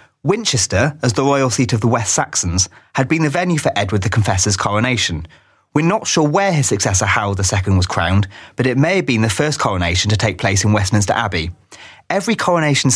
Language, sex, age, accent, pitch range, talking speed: English, male, 30-49, British, 95-135 Hz, 205 wpm